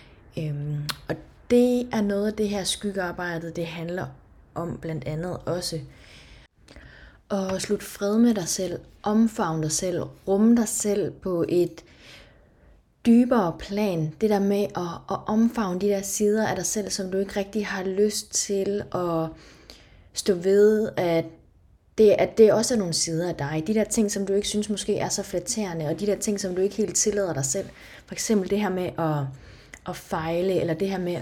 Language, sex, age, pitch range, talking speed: Danish, female, 20-39, 165-205 Hz, 190 wpm